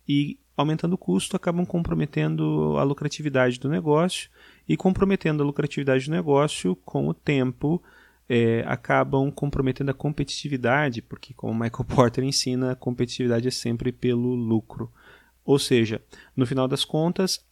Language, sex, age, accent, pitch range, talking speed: Portuguese, male, 30-49, Brazilian, 120-160 Hz, 145 wpm